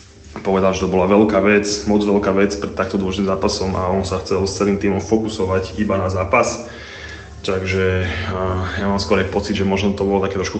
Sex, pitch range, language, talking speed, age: male, 95-105 Hz, Slovak, 205 wpm, 20-39